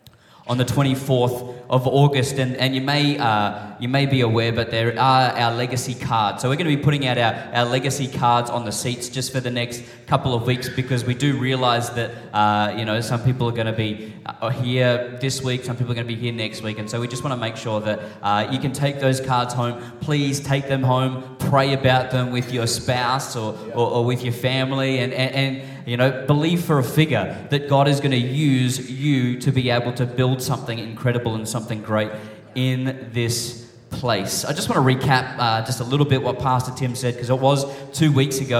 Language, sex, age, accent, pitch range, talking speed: English, male, 10-29, Australian, 120-135 Hz, 225 wpm